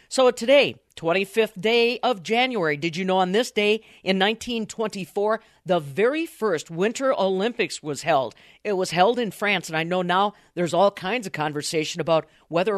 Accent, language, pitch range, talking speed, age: American, English, 165-225 Hz, 175 wpm, 50-69